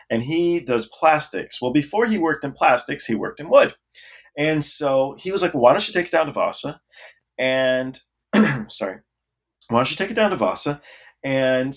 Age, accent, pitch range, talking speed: 30-49, American, 115-160 Hz, 195 wpm